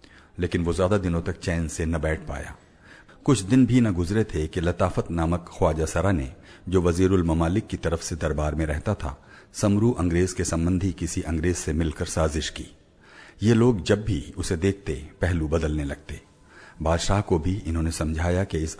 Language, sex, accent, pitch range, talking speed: Hindi, male, native, 80-95 Hz, 185 wpm